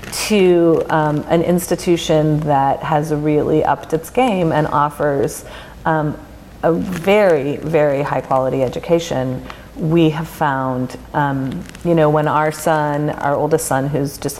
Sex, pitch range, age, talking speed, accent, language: female, 140-165 Hz, 40-59, 140 wpm, American, English